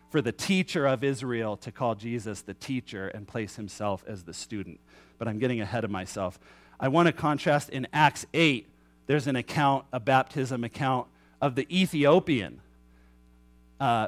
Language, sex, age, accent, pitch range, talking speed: English, male, 40-59, American, 105-155 Hz, 165 wpm